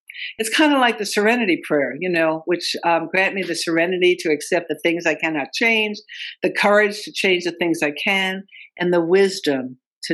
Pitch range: 150-200 Hz